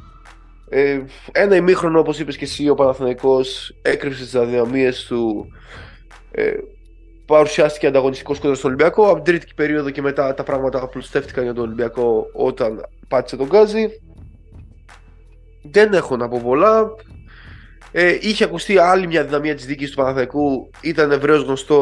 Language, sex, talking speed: Greek, male, 145 wpm